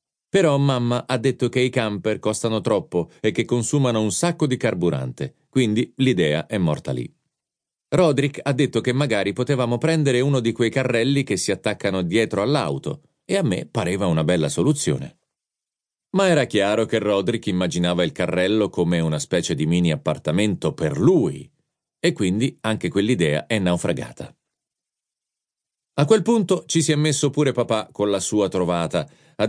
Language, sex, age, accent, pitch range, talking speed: Italian, male, 40-59, native, 95-140 Hz, 165 wpm